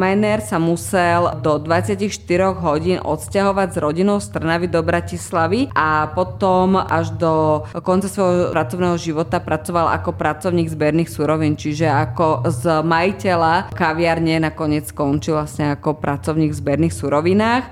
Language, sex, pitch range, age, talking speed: Slovak, female, 150-180 Hz, 20-39, 125 wpm